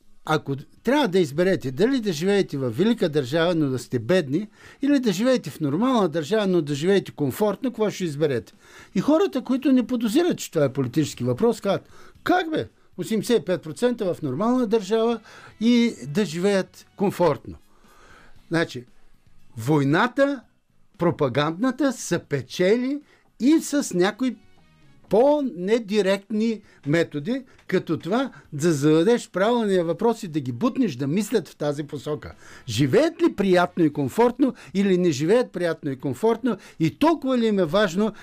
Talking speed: 140 wpm